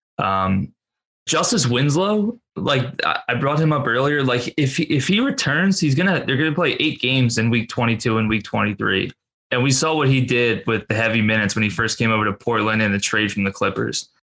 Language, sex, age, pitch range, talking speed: English, male, 20-39, 110-135 Hz, 225 wpm